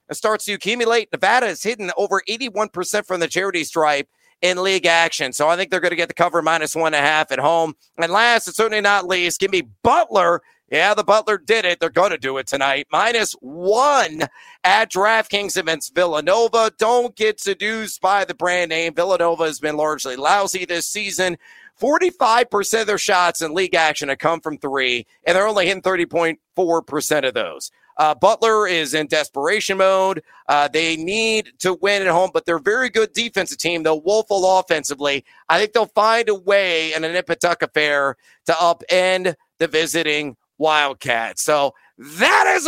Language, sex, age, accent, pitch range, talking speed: English, male, 40-59, American, 155-215 Hz, 185 wpm